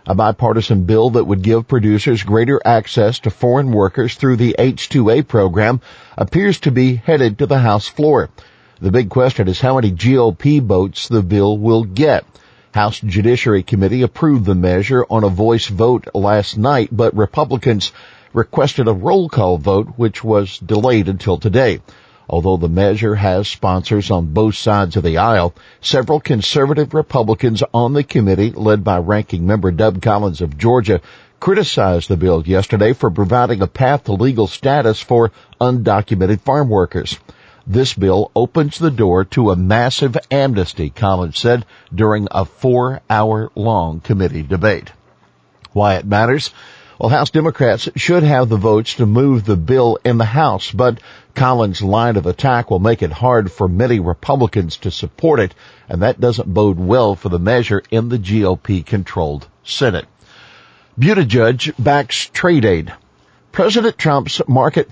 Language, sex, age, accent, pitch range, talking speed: English, male, 50-69, American, 100-125 Hz, 155 wpm